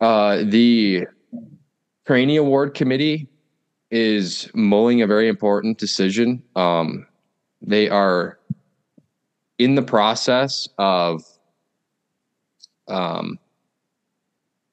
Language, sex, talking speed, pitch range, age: English, male, 75 wpm, 90-110 Hz, 20-39